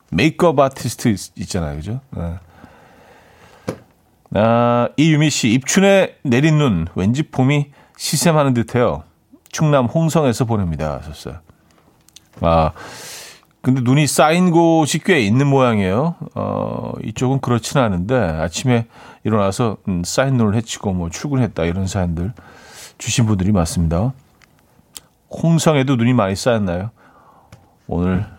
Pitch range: 105-150 Hz